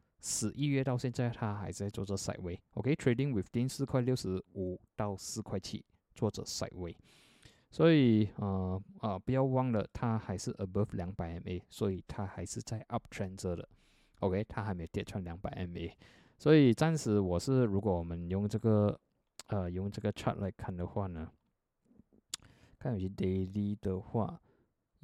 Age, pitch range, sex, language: 20-39, 95-125 Hz, male, Chinese